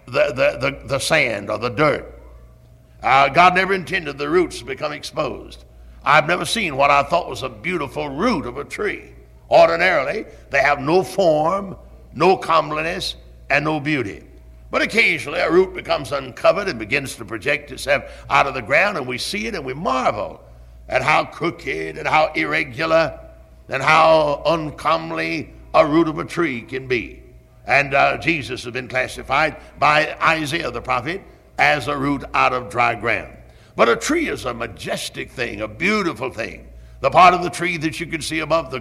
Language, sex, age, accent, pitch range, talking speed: English, male, 60-79, American, 100-160 Hz, 180 wpm